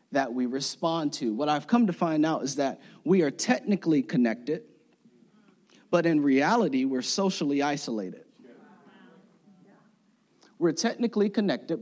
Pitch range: 135-210 Hz